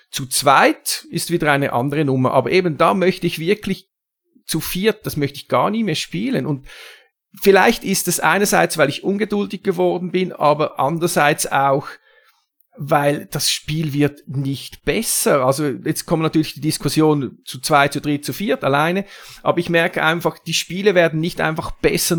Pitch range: 140-170 Hz